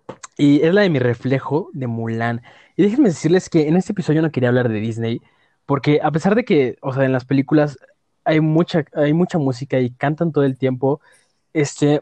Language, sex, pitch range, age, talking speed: Spanish, male, 130-175 Hz, 20-39, 205 wpm